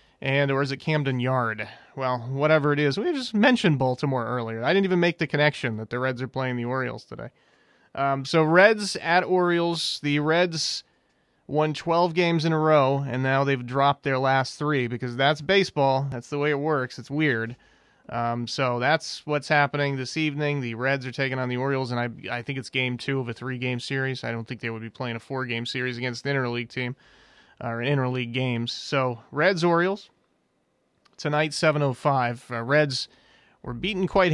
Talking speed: 195 wpm